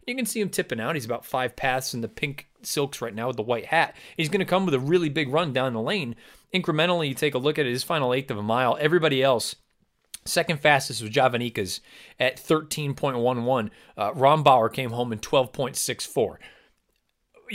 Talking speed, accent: 205 wpm, American